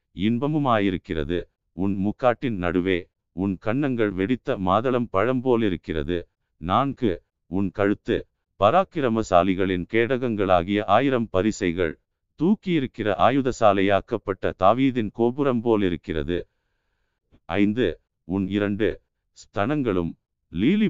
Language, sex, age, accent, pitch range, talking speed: Tamil, male, 50-69, native, 95-125 Hz, 75 wpm